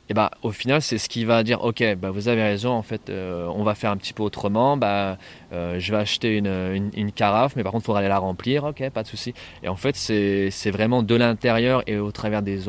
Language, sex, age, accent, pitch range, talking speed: French, male, 20-39, French, 95-115 Hz, 270 wpm